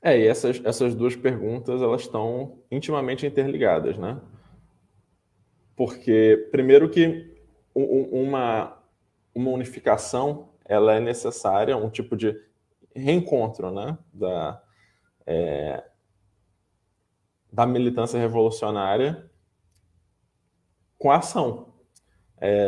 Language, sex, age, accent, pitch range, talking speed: Portuguese, male, 20-39, Brazilian, 100-130 Hz, 95 wpm